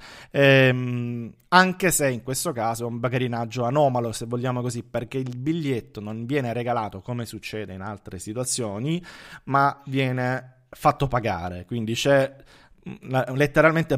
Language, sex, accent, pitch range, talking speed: Italian, male, native, 120-150 Hz, 135 wpm